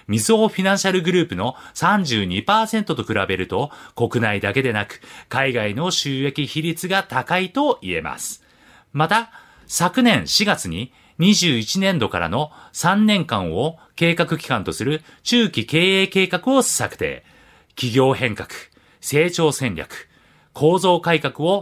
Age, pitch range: 40-59, 130-190 Hz